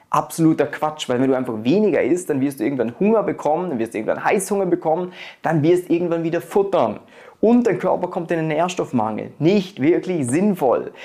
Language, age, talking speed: German, 30-49, 195 wpm